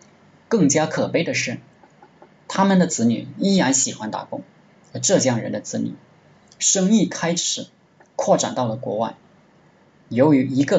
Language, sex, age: Chinese, male, 20-39